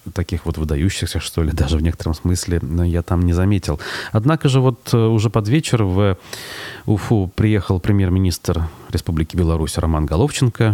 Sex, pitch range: male, 80-100 Hz